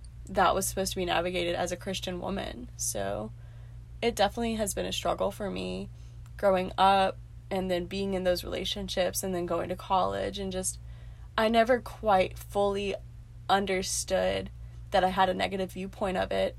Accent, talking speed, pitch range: American, 170 wpm, 115-195 Hz